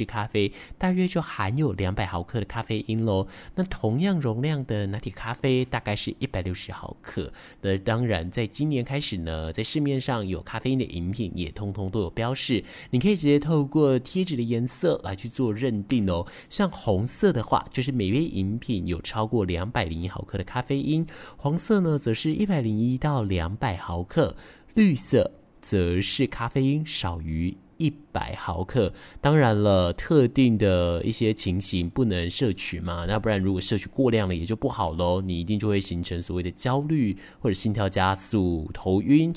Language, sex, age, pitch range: Chinese, male, 20-39, 95-135 Hz